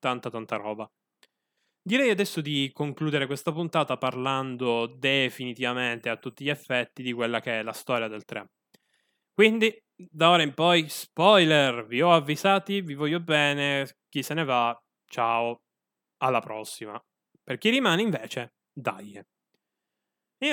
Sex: male